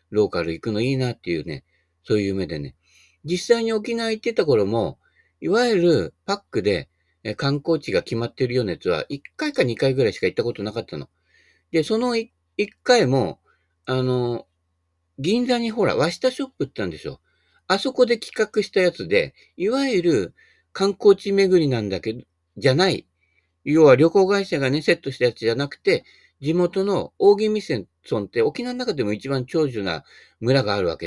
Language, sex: Japanese, male